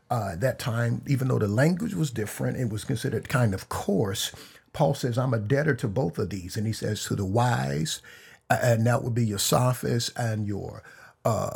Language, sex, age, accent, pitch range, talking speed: English, male, 50-69, American, 110-140 Hz, 200 wpm